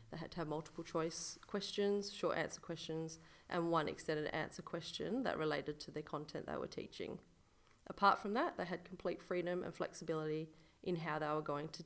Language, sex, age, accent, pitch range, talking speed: English, female, 30-49, Australian, 155-180 Hz, 190 wpm